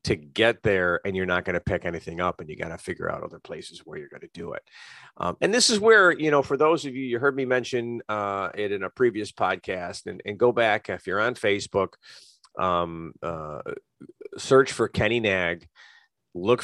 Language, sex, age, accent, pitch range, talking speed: English, male, 40-59, American, 100-125 Hz, 220 wpm